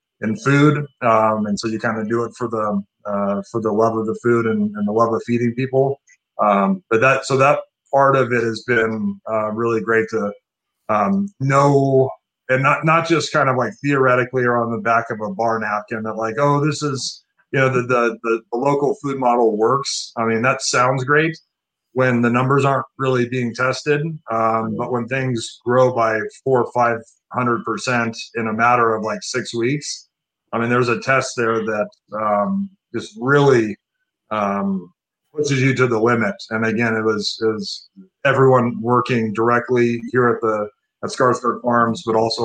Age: 30-49